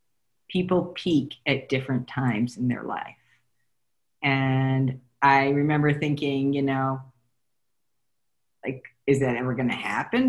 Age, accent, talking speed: 40-59, American, 120 wpm